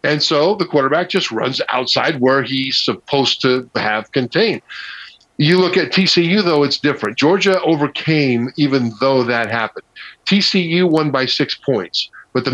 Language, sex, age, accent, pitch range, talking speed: English, male, 50-69, American, 125-155 Hz, 160 wpm